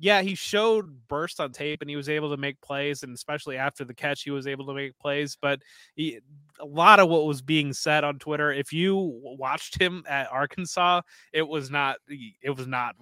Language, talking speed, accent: English, 205 wpm, American